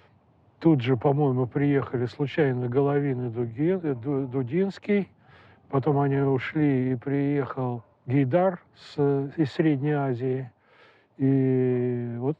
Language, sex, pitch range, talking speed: Russian, male, 130-170 Hz, 90 wpm